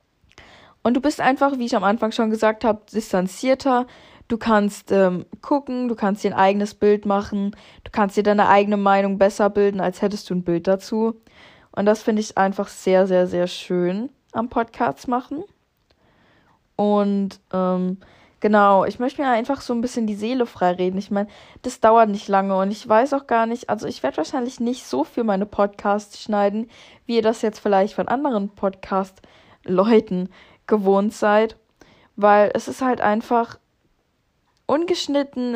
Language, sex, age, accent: German, female, 20-39, German